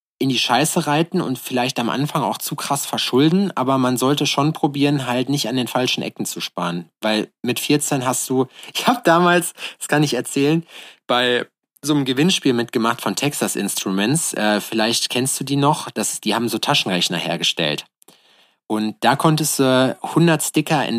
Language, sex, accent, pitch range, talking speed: German, male, German, 115-145 Hz, 185 wpm